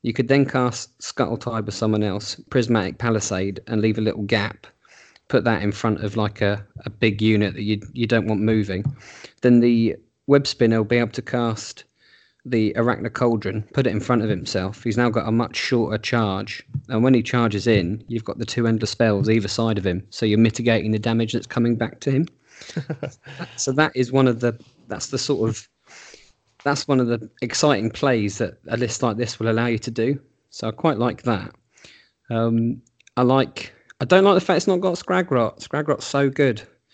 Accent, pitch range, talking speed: British, 105-125 Hz, 210 wpm